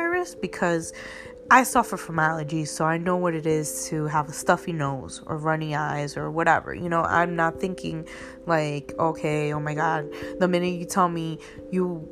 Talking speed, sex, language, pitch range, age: 185 wpm, female, English, 155-195 Hz, 20-39